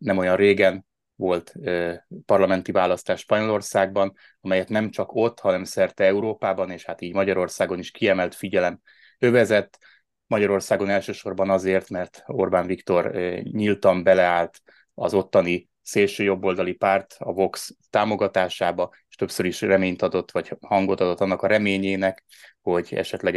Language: Hungarian